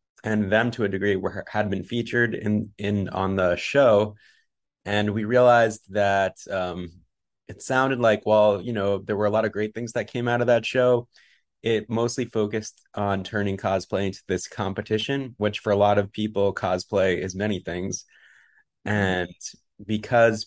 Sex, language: male, English